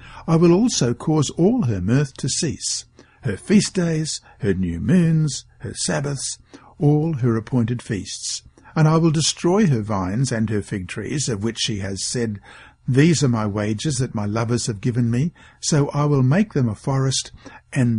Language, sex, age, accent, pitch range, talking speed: English, male, 60-79, Australian, 115-160 Hz, 180 wpm